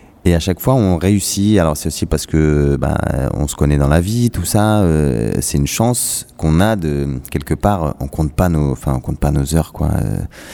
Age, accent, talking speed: 30-49, French, 235 wpm